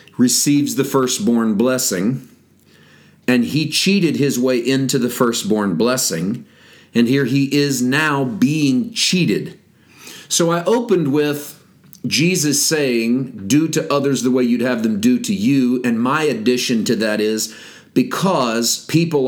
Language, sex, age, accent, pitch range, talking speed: English, male, 40-59, American, 125-165 Hz, 140 wpm